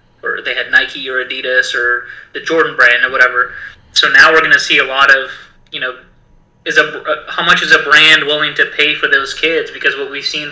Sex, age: male, 20-39